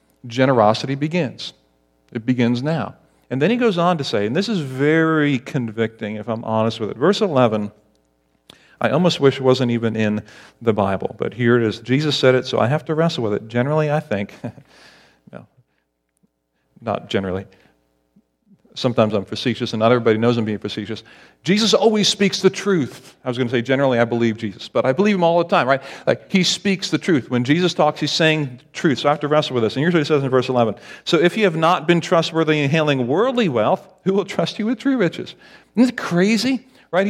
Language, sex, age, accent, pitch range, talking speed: English, male, 50-69, American, 115-170 Hz, 215 wpm